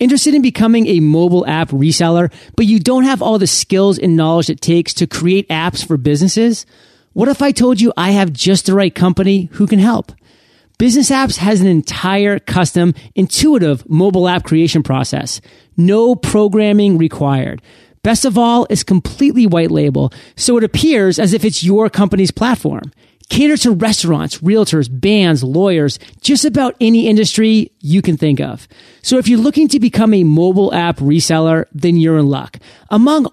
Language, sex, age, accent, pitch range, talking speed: English, male, 30-49, American, 160-215 Hz, 175 wpm